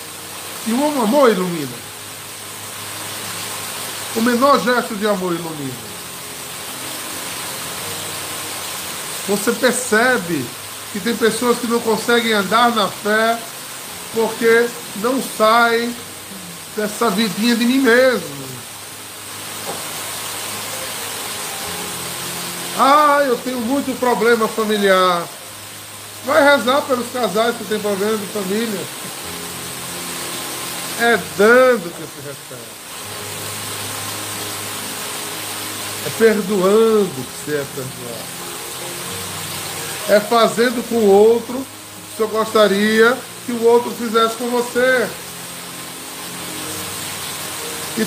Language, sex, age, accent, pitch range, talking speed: Portuguese, male, 20-39, Brazilian, 150-235 Hz, 90 wpm